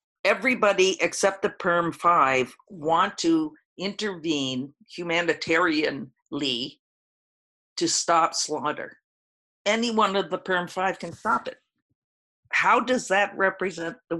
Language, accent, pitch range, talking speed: English, American, 150-190 Hz, 100 wpm